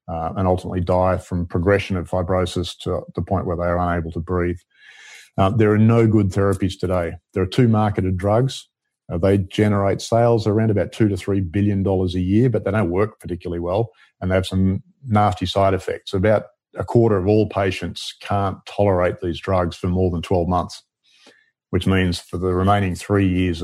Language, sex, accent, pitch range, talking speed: English, male, Australian, 90-100 Hz, 195 wpm